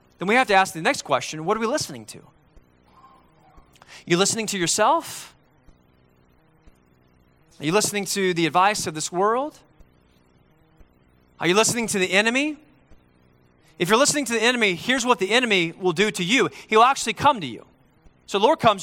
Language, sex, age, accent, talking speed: English, male, 30-49, American, 175 wpm